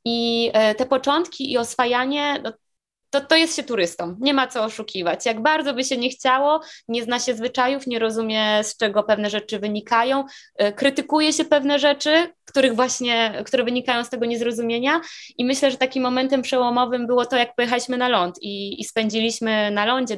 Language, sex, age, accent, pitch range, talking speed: Polish, female, 20-39, native, 210-260 Hz, 170 wpm